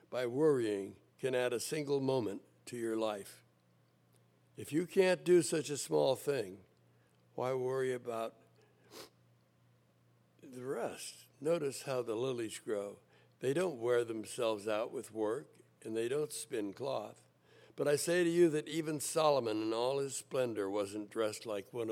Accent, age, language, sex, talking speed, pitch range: American, 60-79, English, male, 155 wpm, 100-140 Hz